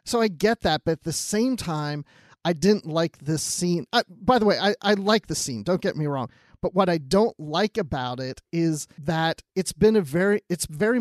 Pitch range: 150-200 Hz